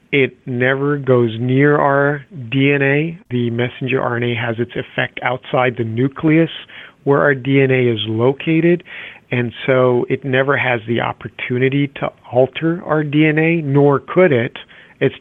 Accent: American